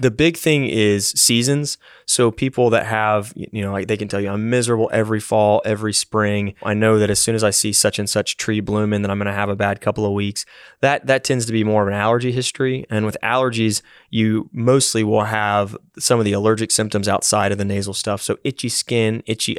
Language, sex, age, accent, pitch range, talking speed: English, male, 20-39, American, 105-115 Hz, 235 wpm